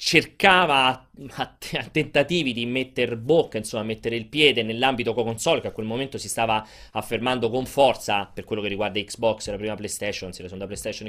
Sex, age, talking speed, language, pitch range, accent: male, 30-49, 190 wpm, Italian, 110-145 Hz, native